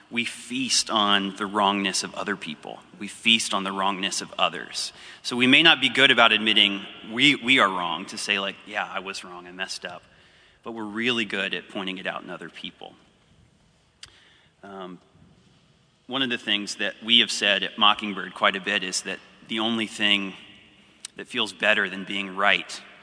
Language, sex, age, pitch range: English, male, 30-49, 95-115 Hz